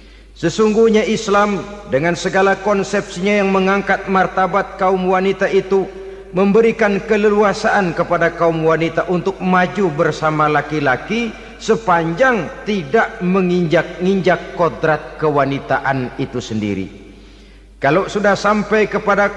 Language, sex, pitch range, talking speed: Indonesian, male, 155-205 Hz, 100 wpm